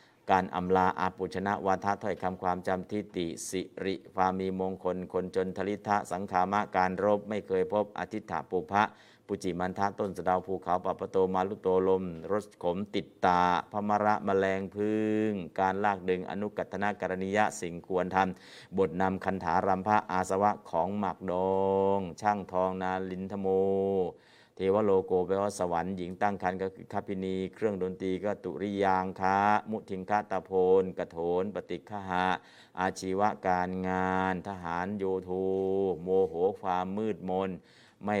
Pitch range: 90-100 Hz